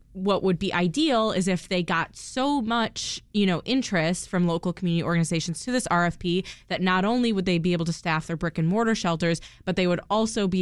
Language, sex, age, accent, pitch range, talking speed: English, female, 20-39, American, 160-185 Hz, 220 wpm